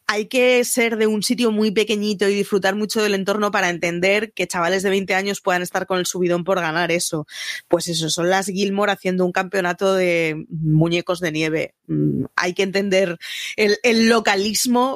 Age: 20-39